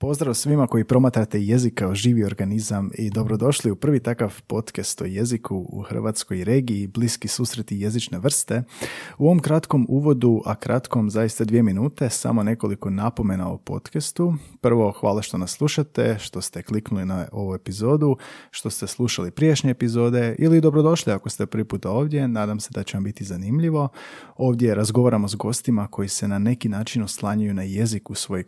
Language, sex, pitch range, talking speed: Croatian, male, 105-125 Hz, 175 wpm